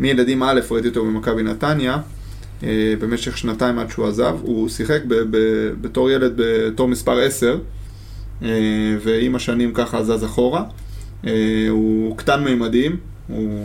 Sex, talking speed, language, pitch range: male, 120 wpm, Hebrew, 105-120 Hz